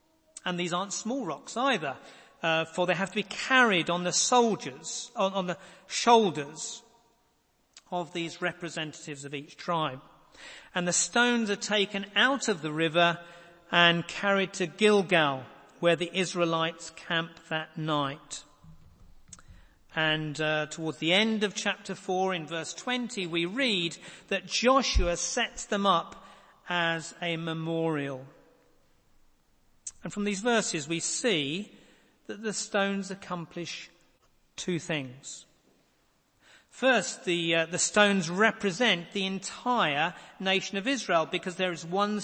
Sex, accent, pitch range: male, British, 160-200 Hz